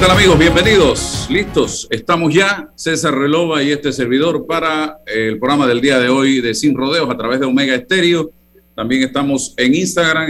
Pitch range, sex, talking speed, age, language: 125-160 Hz, male, 180 wpm, 50-69, Spanish